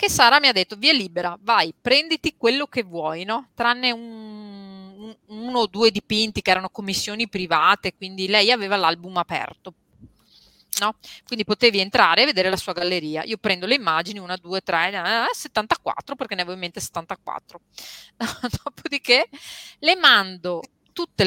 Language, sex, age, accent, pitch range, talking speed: Italian, female, 30-49, native, 185-240 Hz, 150 wpm